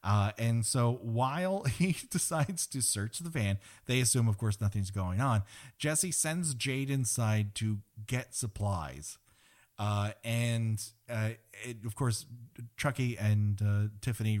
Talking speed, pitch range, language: 140 wpm, 100-125 Hz, English